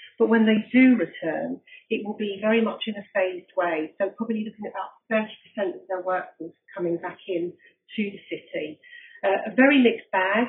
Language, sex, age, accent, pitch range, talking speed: English, female, 40-59, British, 190-235 Hz, 195 wpm